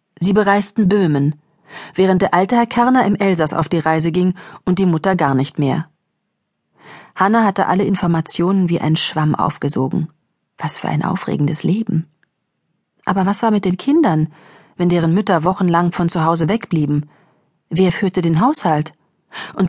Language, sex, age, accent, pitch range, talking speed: German, female, 40-59, German, 155-195 Hz, 160 wpm